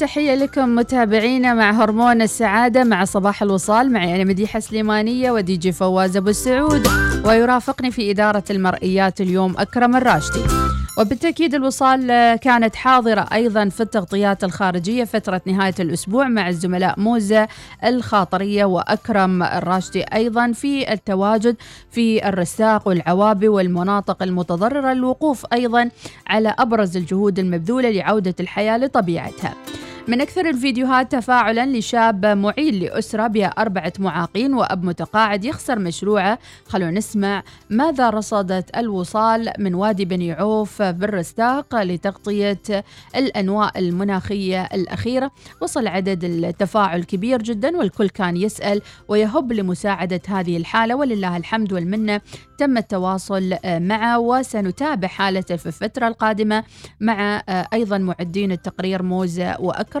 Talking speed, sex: 115 wpm, female